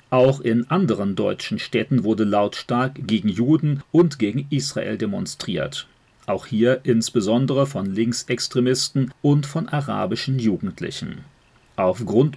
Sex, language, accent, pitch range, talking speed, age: male, German, German, 110-135 Hz, 110 wpm, 40-59